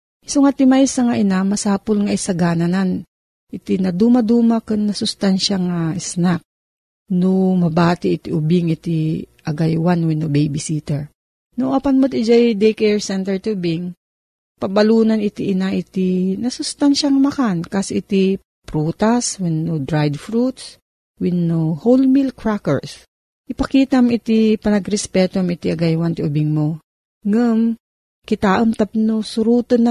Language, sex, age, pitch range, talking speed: Filipino, female, 40-59, 175-235 Hz, 120 wpm